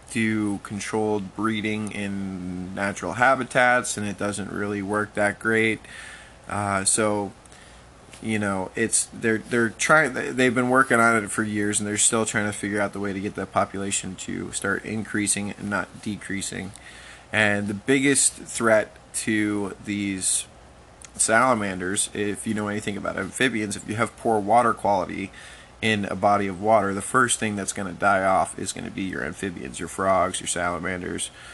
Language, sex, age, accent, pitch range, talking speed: English, male, 20-39, American, 100-110 Hz, 165 wpm